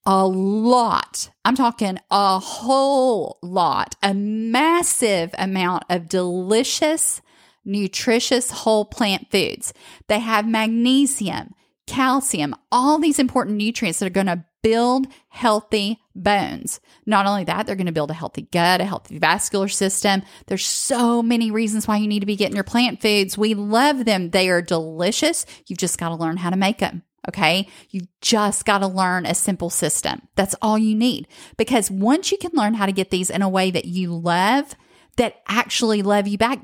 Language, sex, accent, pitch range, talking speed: English, female, American, 190-245 Hz, 175 wpm